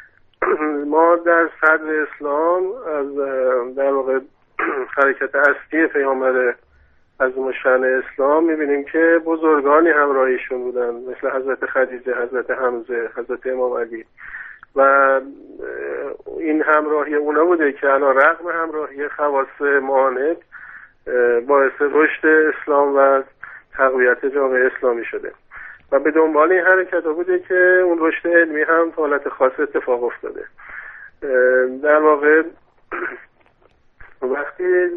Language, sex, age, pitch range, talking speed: Persian, male, 50-69, 135-165 Hz, 110 wpm